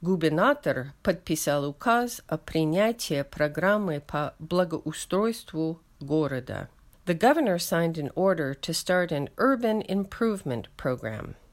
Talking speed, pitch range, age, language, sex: 105 wpm, 145-205 Hz, 50-69, English, female